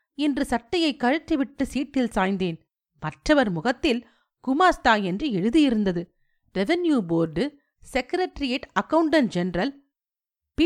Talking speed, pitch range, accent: 90 wpm, 210-295 Hz, native